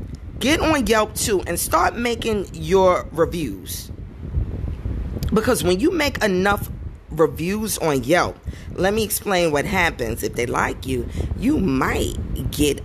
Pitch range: 125-205 Hz